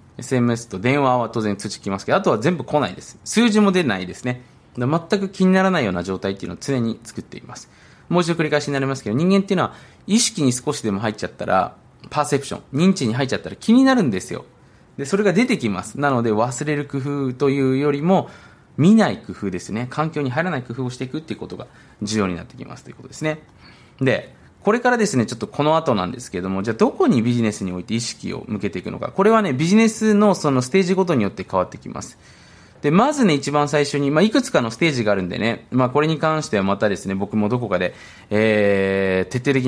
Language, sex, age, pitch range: Japanese, male, 20-39, 105-170 Hz